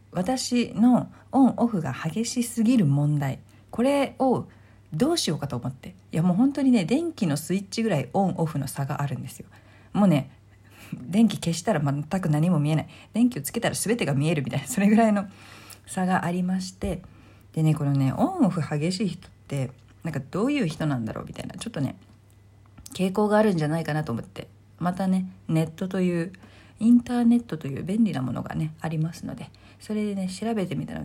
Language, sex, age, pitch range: Japanese, female, 40-59, 140-210 Hz